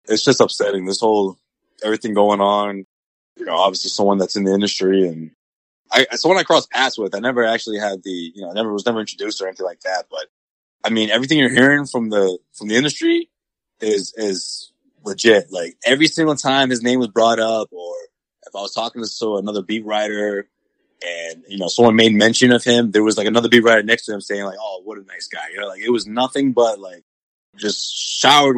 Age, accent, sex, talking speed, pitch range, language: 20-39, American, male, 225 wpm, 100-115 Hz, English